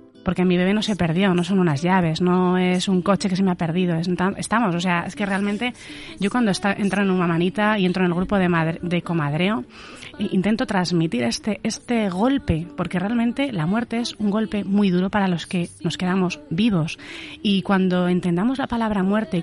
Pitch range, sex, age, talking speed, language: 170-205 Hz, female, 30-49, 215 wpm, Spanish